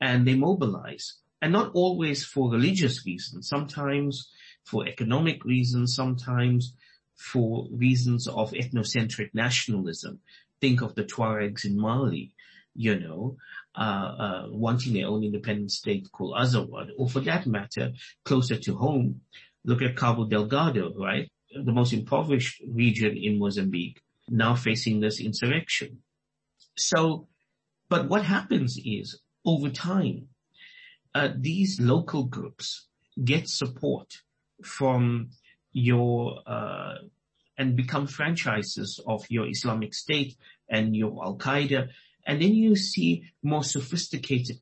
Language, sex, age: English, male, 50-69